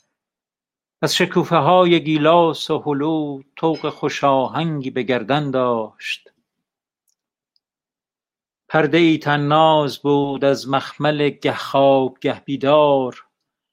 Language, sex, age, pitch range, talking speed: Persian, male, 50-69, 135-160 Hz, 80 wpm